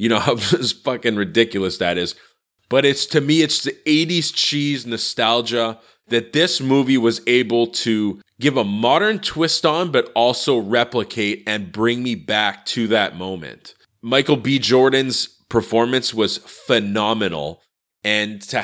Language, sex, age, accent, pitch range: Chinese, male, 30-49, American, 105-135 Hz